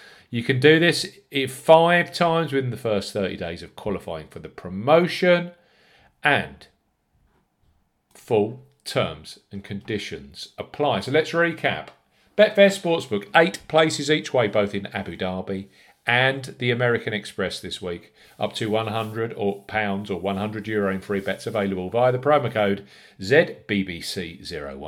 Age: 50-69